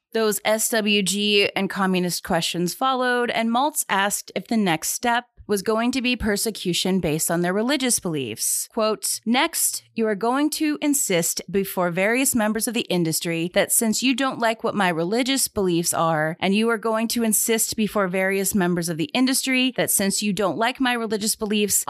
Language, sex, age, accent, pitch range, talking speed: English, female, 30-49, American, 175-230 Hz, 180 wpm